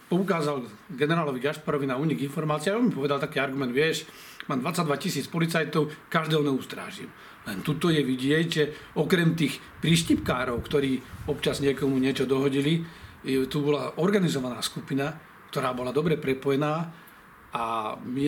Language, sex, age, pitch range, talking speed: Slovak, male, 40-59, 140-170 Hz, 140 wpm